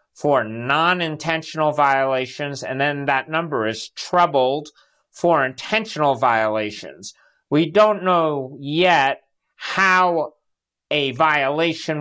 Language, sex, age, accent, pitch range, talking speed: English, male, 50-69, American, 140-175 Hz, 95 wpm